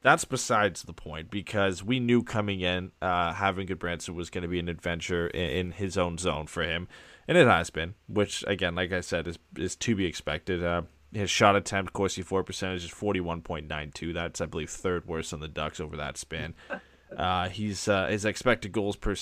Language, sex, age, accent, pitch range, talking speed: English, male, 20-39, American, 85-105 Hz, 215 wpm